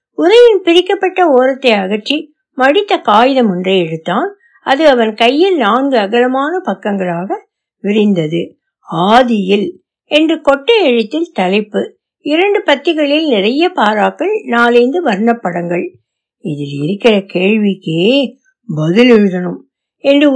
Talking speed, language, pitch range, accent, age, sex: 50 wpm, Tamil, 200-305 Hz, native, 60-79, female